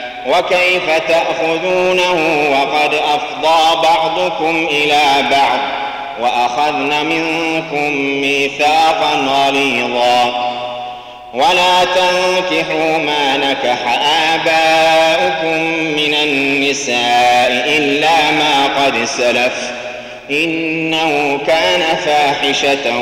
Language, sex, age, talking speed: Arabic, male, 30-49, 65 wpm